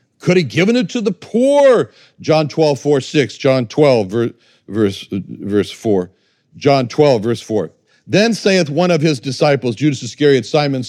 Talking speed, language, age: 160 wpm, English, 60-79